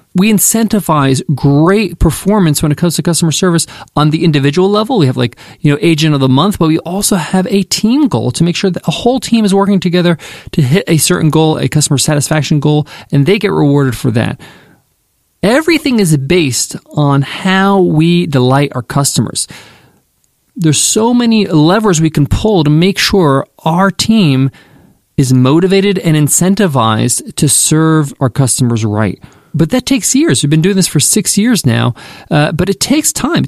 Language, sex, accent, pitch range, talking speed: English, male, American, 145-195 Hz, 185 wpm